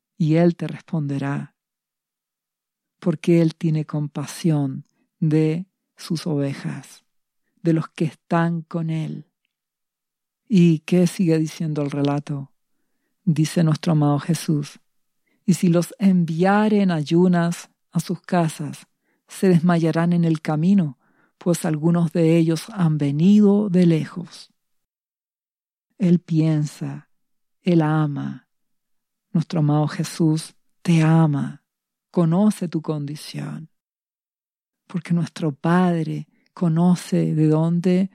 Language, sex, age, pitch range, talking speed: Spanish, female, 50-69, 155-185 Hz, 105 wpm